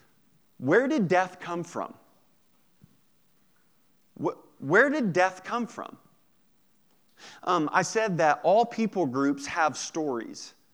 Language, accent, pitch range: English, American, 130-175 Hz